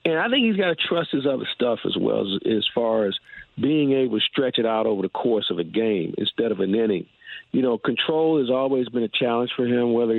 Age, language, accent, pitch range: 50-69, English, American, 110-135 Hz